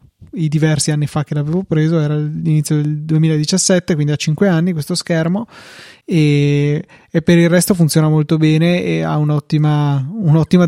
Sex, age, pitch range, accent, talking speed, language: male, 20-39, 150-170 Hz, native, 165 wpm, Italian